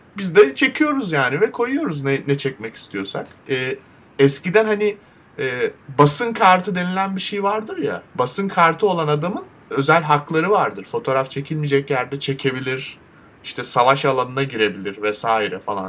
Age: 30-49